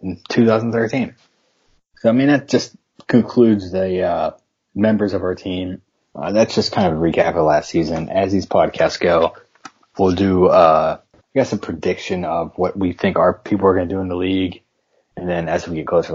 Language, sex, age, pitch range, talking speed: English, male, 20-39, 90-105 Hz, 205 wpm